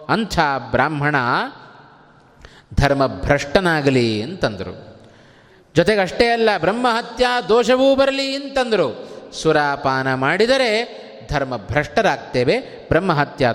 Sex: male